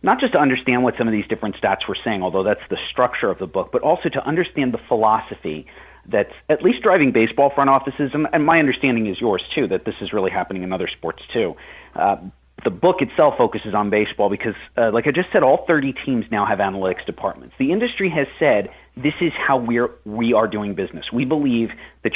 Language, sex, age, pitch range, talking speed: English, male, 40-59, 105-145 Hz, 225 wpm